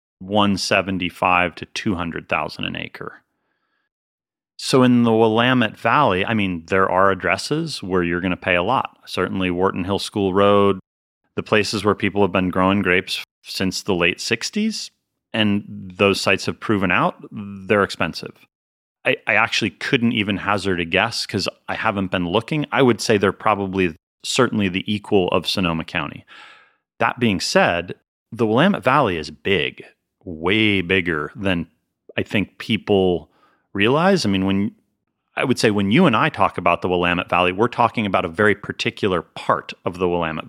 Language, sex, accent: English, male, American